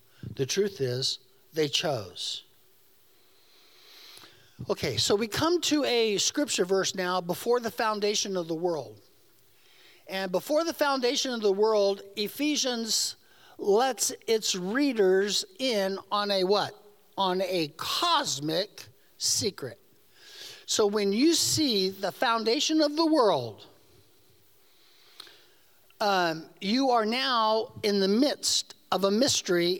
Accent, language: American, English